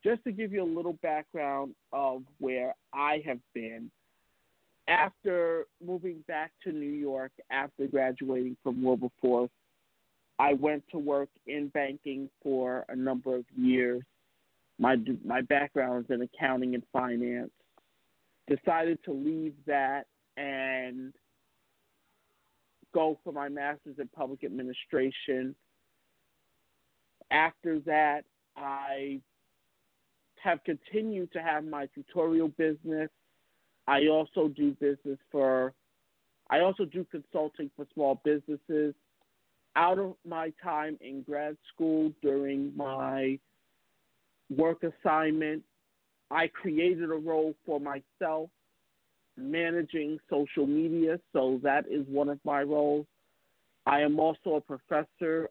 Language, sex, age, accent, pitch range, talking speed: English, male, 50-69, American, 135-160 Hz, 115 wpm